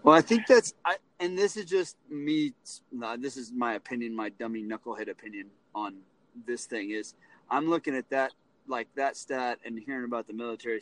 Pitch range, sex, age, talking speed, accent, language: 120-170 Hz, male, 30-49, 185 wpm, American, English